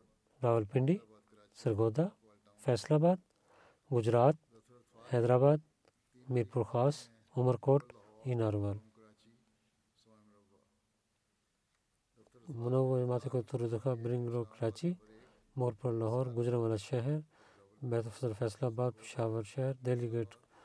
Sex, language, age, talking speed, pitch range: male, Bulgarian, 40-59, 90 wpm, 110-130 Hz